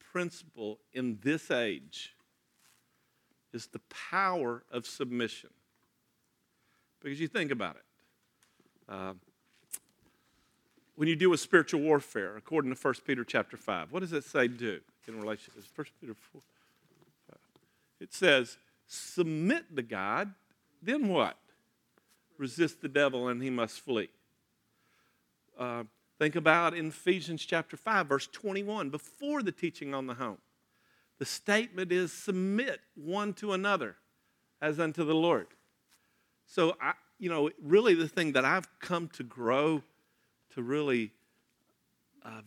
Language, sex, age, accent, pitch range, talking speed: English, male, 50-69, American, 120-170 Hz, 130 wpm